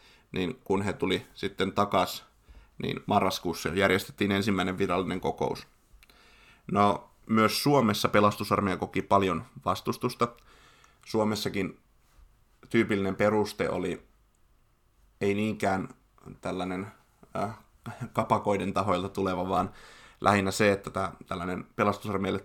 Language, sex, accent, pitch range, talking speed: Finnish, male, native, 95-105 Hz, 100 wpm